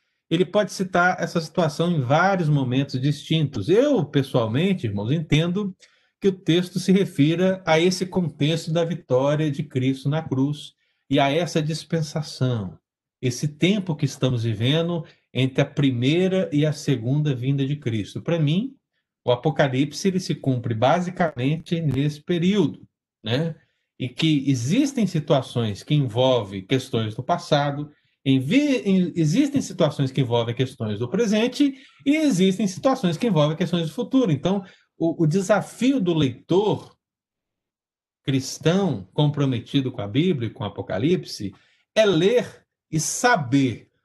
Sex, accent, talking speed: male, Brazilian, 135 wpm